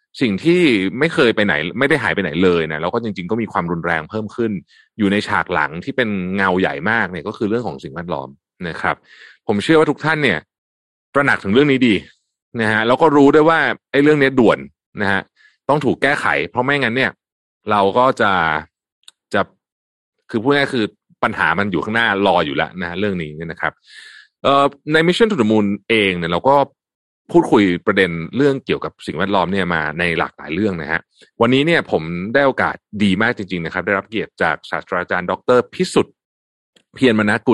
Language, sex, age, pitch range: Thai, male, 30-49, 90-135 Hz